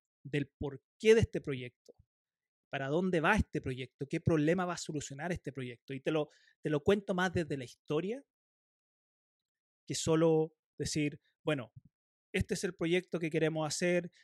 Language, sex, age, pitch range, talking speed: Spanish, male, 30-49, 140-170 Hz, 155 wpm